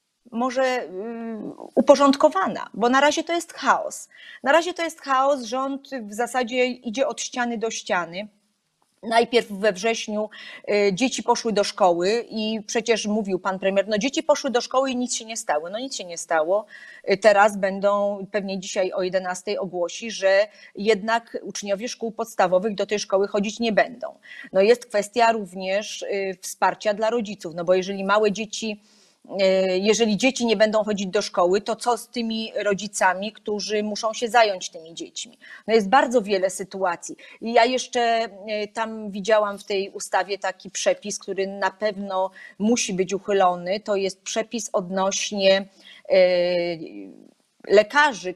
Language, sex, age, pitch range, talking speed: Polish, female, 30-49, 195-235 Hz, 150 wpm